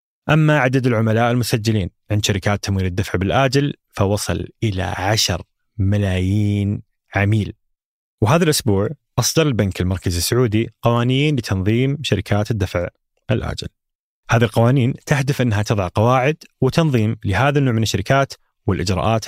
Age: 30-49